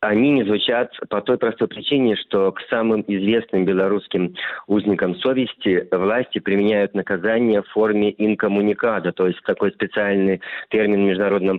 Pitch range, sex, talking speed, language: 95-110 Hz, male, 140 wpm, Russian